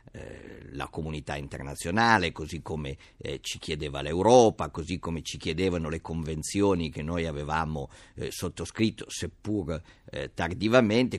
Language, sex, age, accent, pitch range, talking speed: Italian, male, 50-69, native, 80-110 Hz, 125 wpm